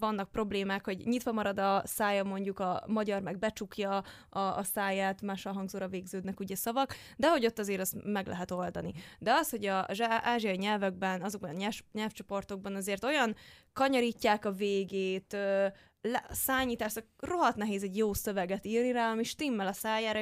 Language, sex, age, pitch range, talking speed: Hungarian, female, 20-39, 195-230 Hz, 165 wpm